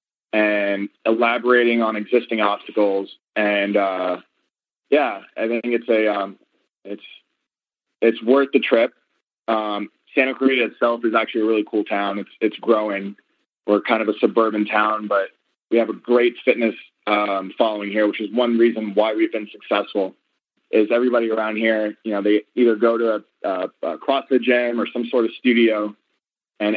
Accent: American